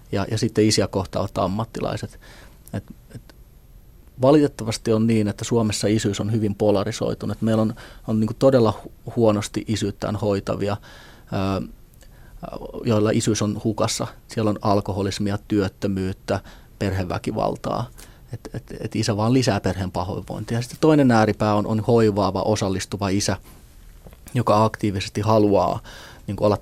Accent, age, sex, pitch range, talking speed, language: native, 30-49, male, 100-110 Hz, 125 wpm, Finnish